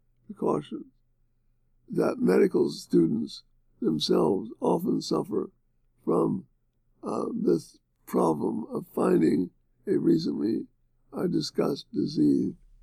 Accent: American